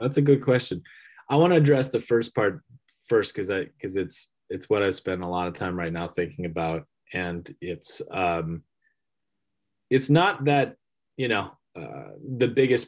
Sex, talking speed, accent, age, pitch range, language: male, 180 wpm, American, 20-39, 95-120 Hz, English